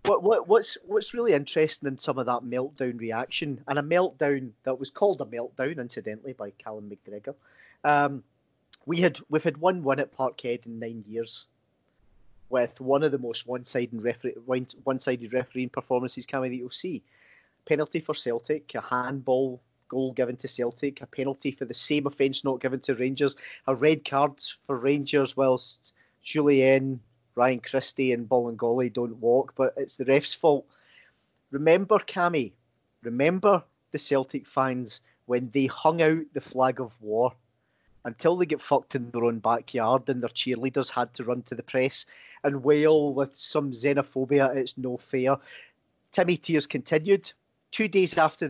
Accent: British